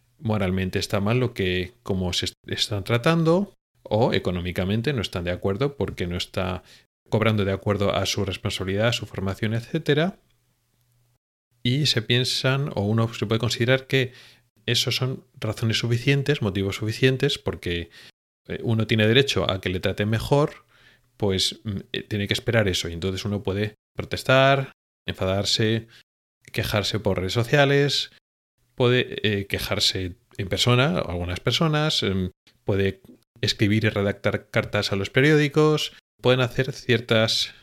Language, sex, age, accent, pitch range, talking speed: Spanish, male, 30-49, Spanish, 100-125 Hz, 140 wpm